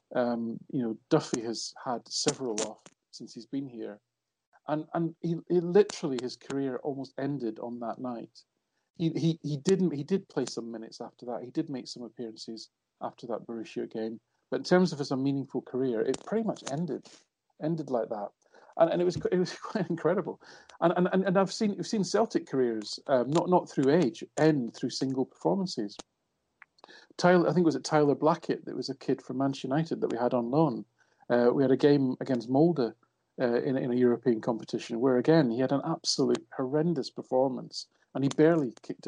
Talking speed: 200 wpm